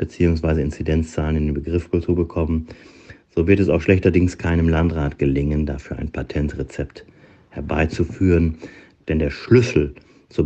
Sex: male